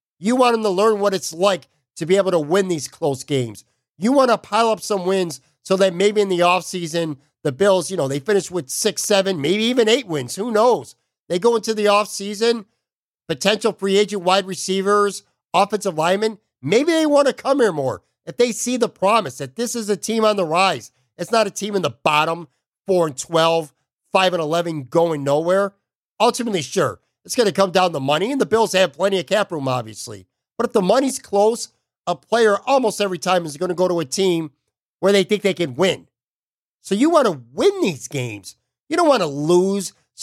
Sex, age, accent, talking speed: male, 50-69, American, 215 wpm